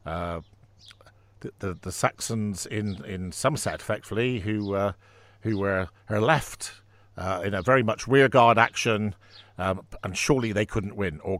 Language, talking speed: English, 140 wpm